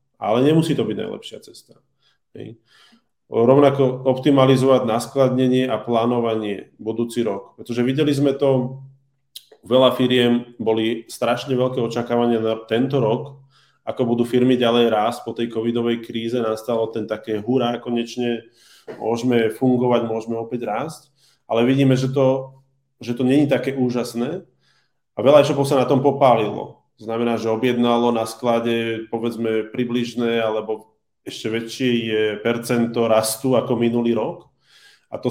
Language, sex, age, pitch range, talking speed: Czech, male, 20-39, 115-130 Hz, 140 wpm